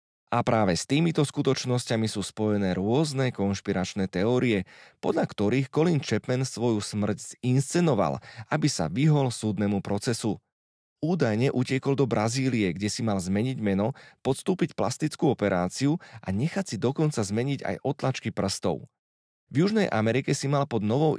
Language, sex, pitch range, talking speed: Slovak, male, 105-140 Hz, 140 wpm